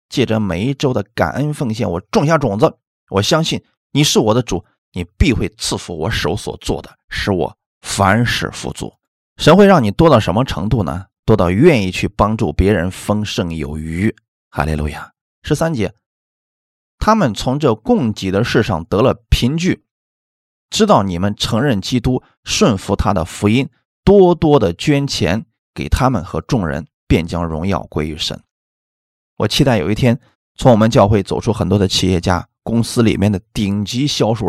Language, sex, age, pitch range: Chinese, male, 20-39, 90-125 Hz